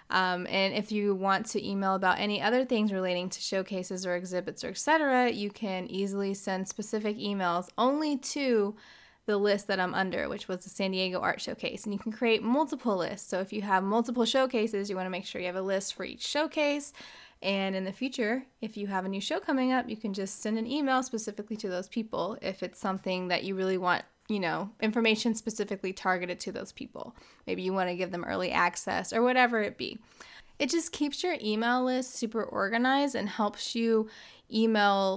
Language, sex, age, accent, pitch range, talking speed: English, female, 20-39, American, 190-235 Hz, 210 wpm